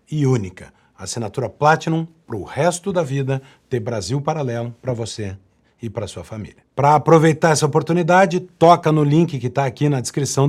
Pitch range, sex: 130-175 Hz, male